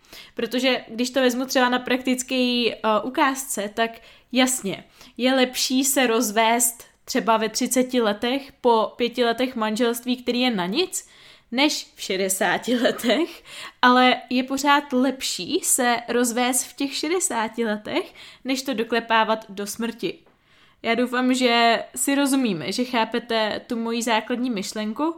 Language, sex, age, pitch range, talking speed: Czech, female, 20-39, 220-260 Hz, 135 wpm